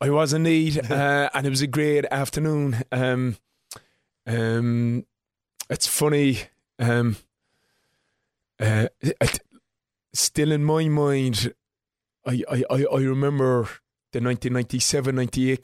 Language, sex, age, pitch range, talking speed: English, male, 20-39, 120-135 Hz, 90 wpm